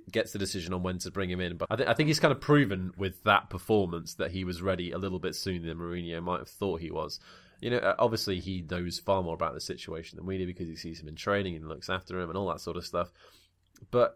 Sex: male